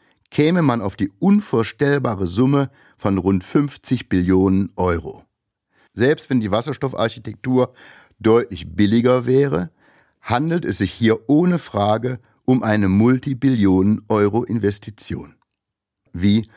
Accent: German